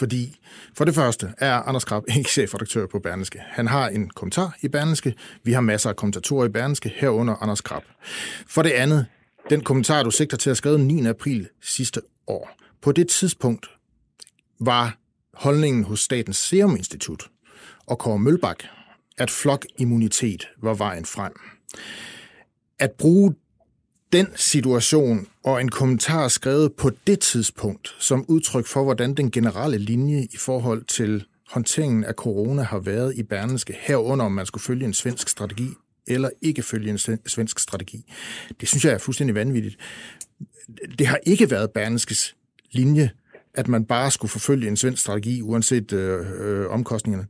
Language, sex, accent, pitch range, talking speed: Danish, male, native, 110-140 Hz, 155 wpm